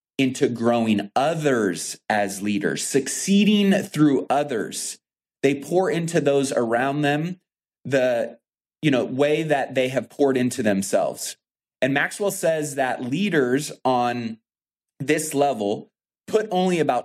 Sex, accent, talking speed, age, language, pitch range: male, American, 115 wpm, 30-49, English, 115-160 Hz